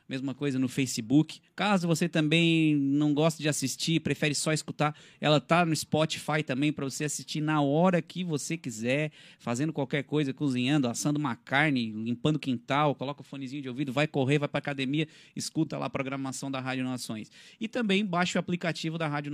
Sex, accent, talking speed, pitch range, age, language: male, Brazilian, 185 wpm, 130-155 Hz, 20-39, Portuguese